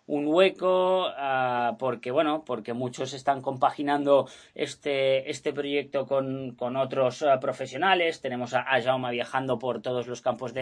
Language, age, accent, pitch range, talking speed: Spanish, 20-39, Spanish, 130-165 Hz, 155 wpm